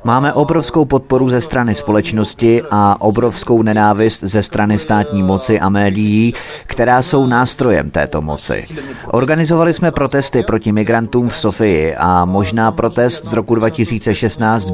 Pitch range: 95-115 Hz